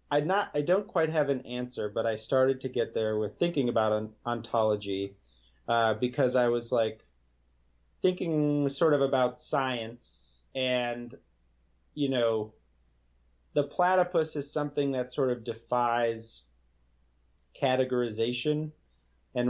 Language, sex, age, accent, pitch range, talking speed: English, male, 30-49, American, 75-125 Hz, 120 wpm